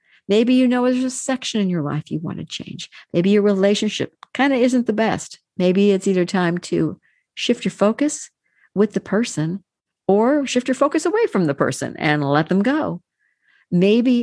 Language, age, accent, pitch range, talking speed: English, 50-69, American, 165-210 Hz, 190 wpm